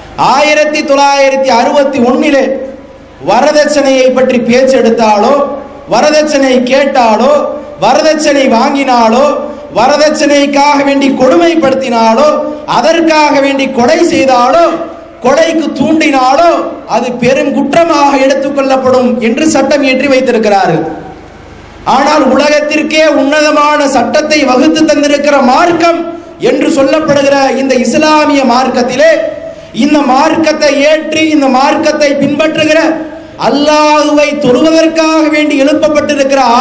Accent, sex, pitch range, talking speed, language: Indian, male, 275-320 Hz, 70 wpm, English